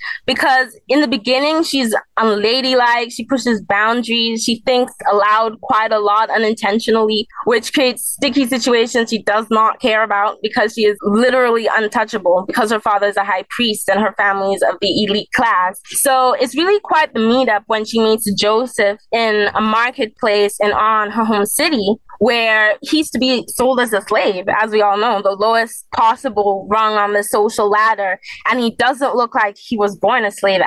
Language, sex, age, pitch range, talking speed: English, female, 20-39, 210-255 Hz, 185 wpm